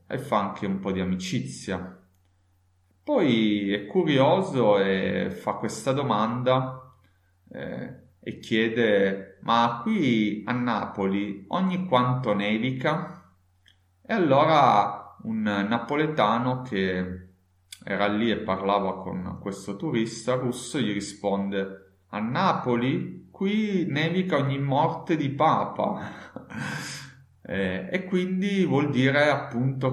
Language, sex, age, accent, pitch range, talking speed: Italian, male, 30-49, native, 95-130 Hz, 105 wpm